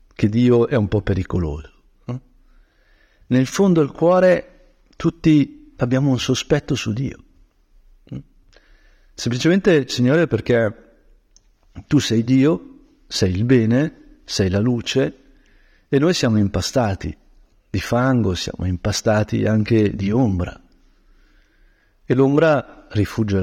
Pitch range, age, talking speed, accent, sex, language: 100-140 Hz, 50-69, 110 wpm, native, male, Italian